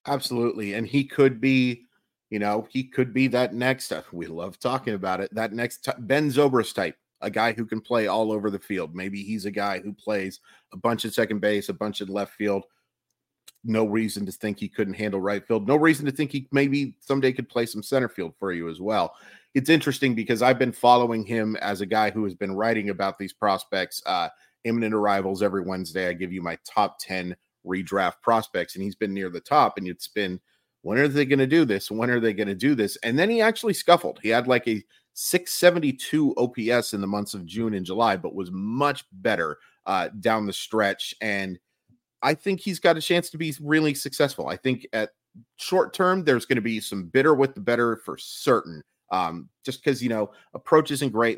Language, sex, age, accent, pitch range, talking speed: English, male, 30-49, American, 100-135 Hz, 215 wpm